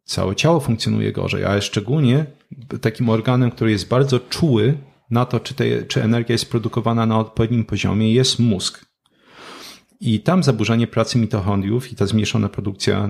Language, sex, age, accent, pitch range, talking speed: Polish, male, 40-59, native, 105-120 Hz, 150 wpm